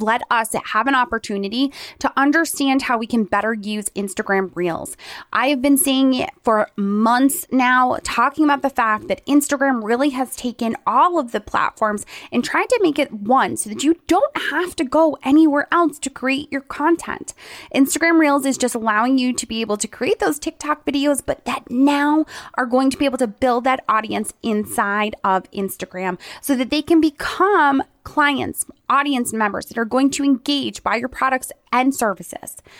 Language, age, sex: English, 20-39, female